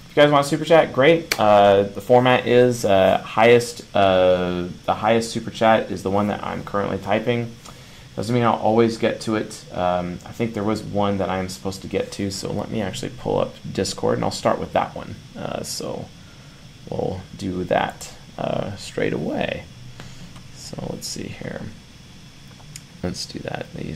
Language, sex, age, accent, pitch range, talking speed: English, male, 30-49, American, 100-130 Hz, 180 wpm